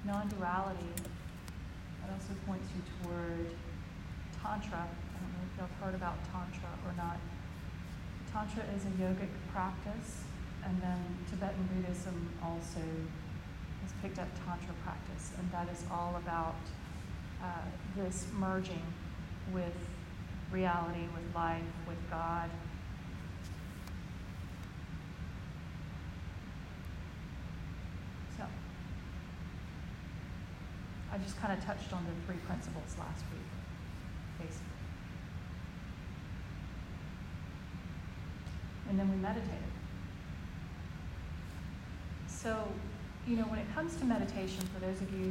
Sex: female